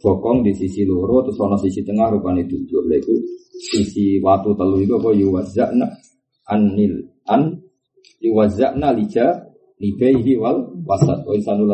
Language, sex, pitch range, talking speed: Indonesian, male, 95-130 Hz, 65 wpm